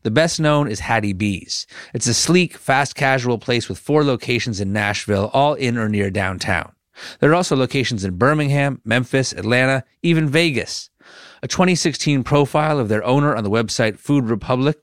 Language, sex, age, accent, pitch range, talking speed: English, male, 30-49, American, 110-140 Hz, 175 wpm